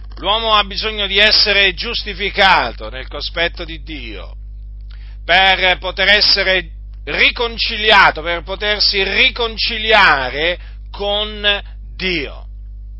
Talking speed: 90 wpm